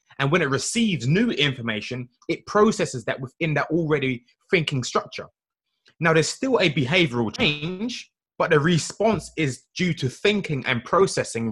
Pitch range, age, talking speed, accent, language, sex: 125-175 Hz, 20-39, 150 wpm, British, English, male